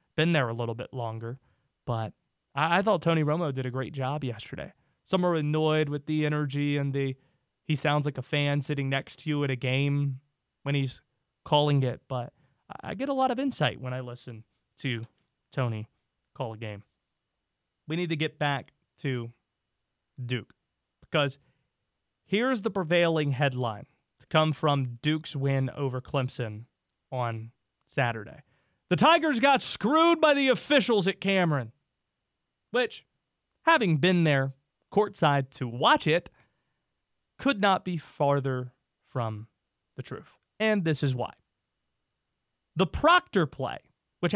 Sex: male